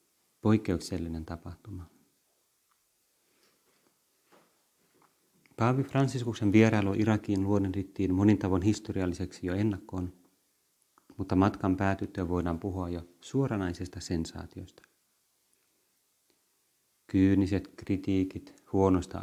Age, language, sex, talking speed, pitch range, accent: 30-49, Finnish, male, 70 wpm, 90-100 Hz, native